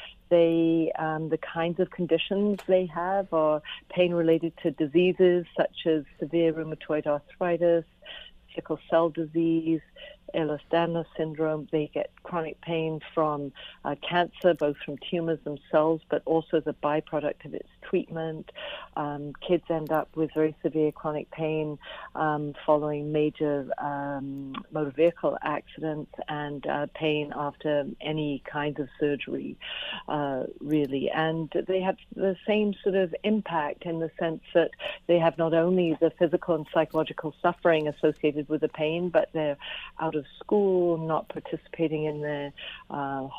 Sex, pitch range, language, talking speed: female, 150-170 Hz, English, 140 wpm